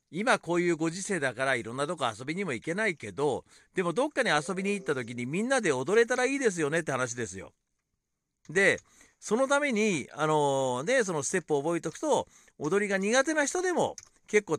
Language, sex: Japanese, male